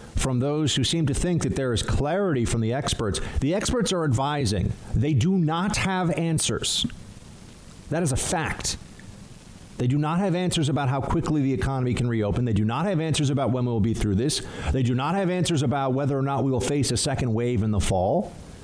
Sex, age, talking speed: male, 50-69, 220 wpm